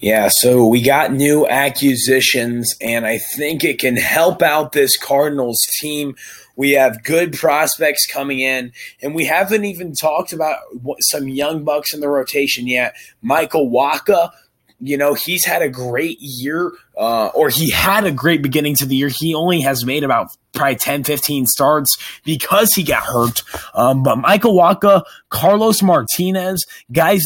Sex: male